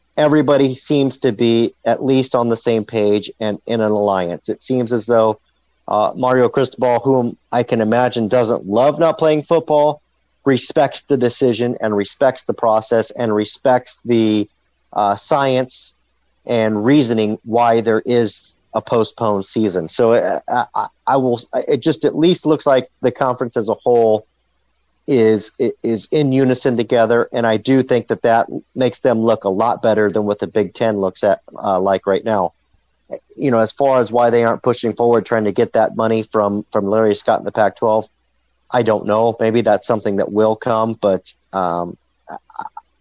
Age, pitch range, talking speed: 40-59, 105-125 Hz, 175 wpm